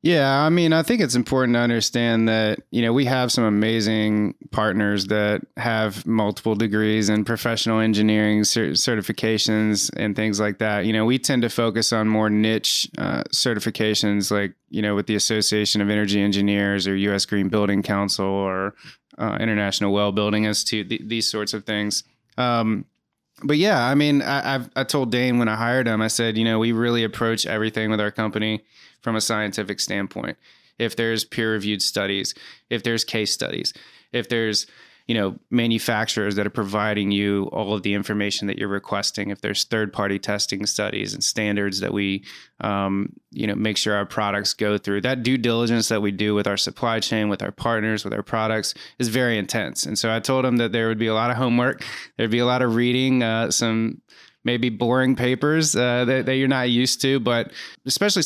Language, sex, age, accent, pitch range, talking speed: English, male, 20-39, American, 105-120 Hz, 195 wpm